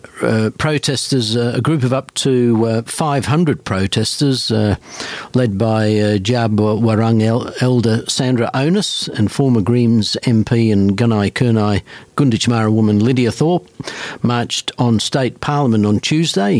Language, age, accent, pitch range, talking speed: English, 50-69, British, 105-125 Hz, 135 wpm